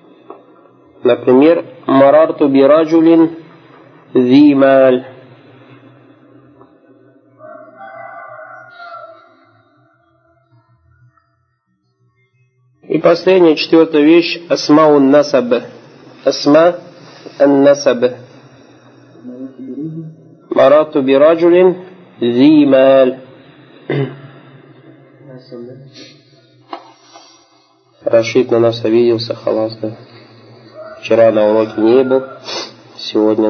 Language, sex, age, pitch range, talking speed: Russian, male, 50-69, 125-155 Hz, 45 wpm